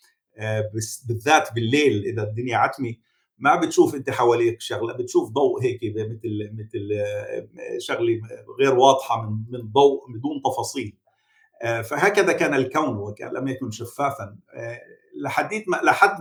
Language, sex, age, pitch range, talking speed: Arabic, male, 50-69, 110-160 Hz, 115 wpm